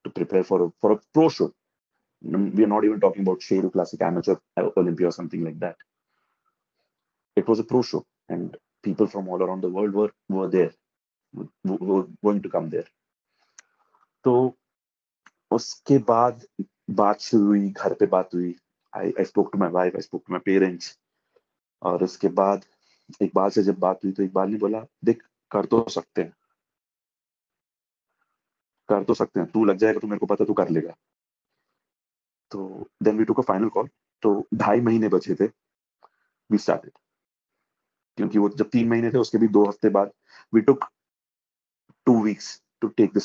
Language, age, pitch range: Urdu, 30-49, 95-115 Hz